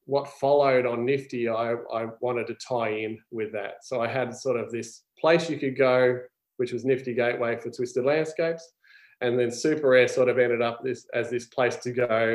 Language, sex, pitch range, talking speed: English, male, 115-135 Hz, 210 wpm